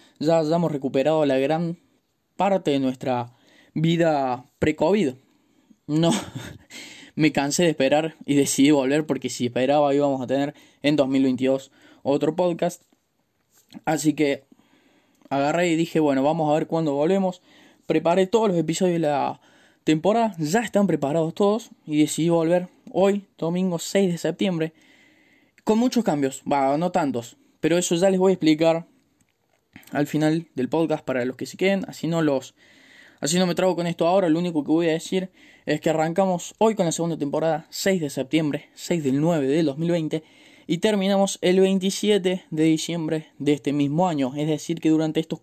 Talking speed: 170 wpm